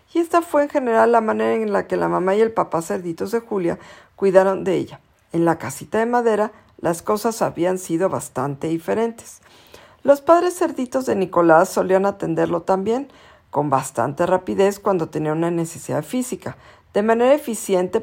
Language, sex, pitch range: Spanish, female, 170-240 Hz